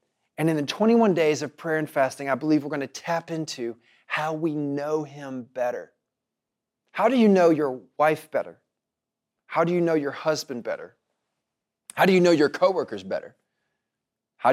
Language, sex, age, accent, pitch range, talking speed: English, male, 30-49, American, 140-175 Hz, 180 wpm